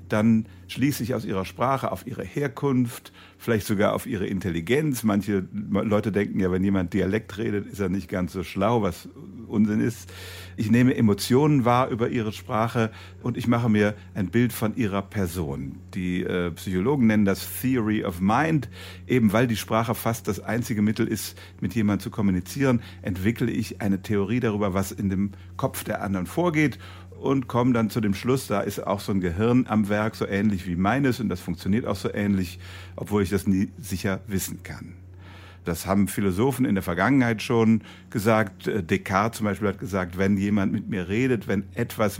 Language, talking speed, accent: German, 185 wpm, German